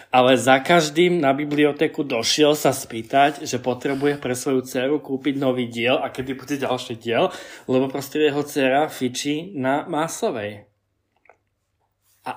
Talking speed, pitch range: 140 wpm, 125-155 Hz